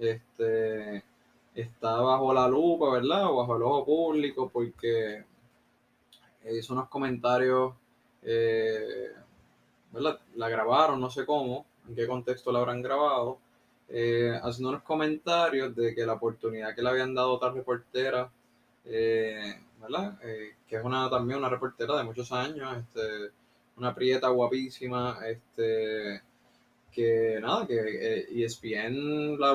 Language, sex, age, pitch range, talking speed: Spanish, male, 20-39, 115-135 Hz, 130 wpm